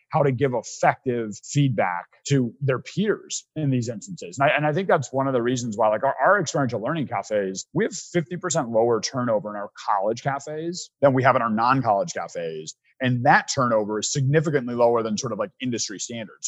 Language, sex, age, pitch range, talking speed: English, male, 30-49, 115-150 Hz, 205 wpm